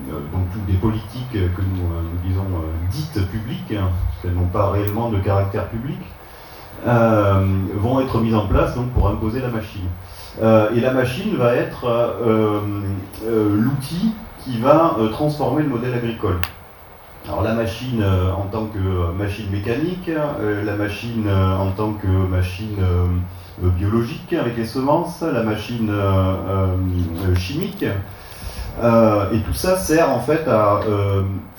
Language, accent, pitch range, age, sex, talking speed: French, French, 95-120 Hz, 30-49, male, 155 wpm